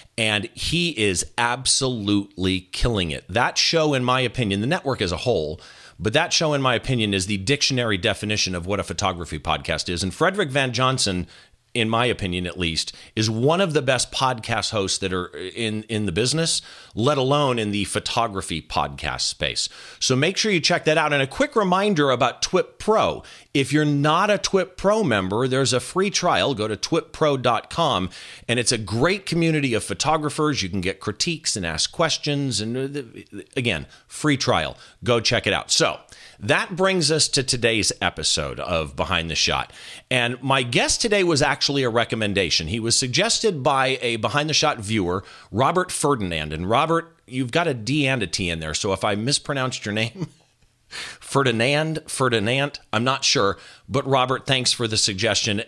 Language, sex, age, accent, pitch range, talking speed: English, male, 40-59, American, 100-145 Hz, 180 wpm